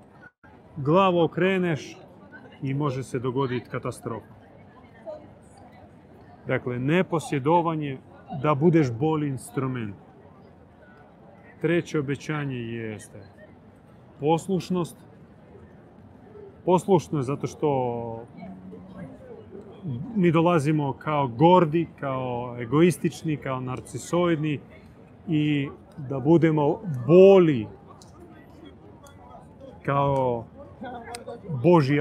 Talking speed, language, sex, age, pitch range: 65 wpm, Croatian, male, 30-49, 130-165 Hz